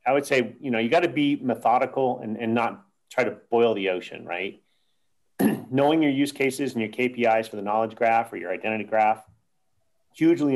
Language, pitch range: English, 110-140 Hz